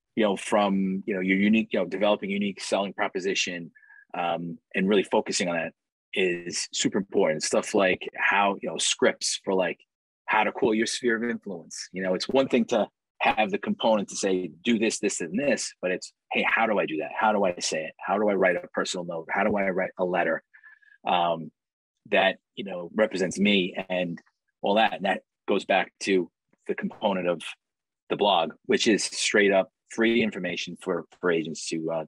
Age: 30-49